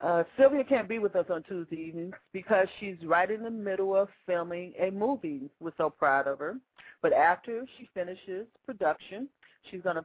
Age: 40-59